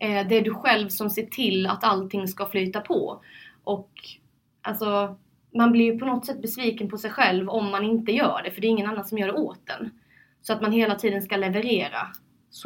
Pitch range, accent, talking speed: 185-225 Hz, native, 225 wpm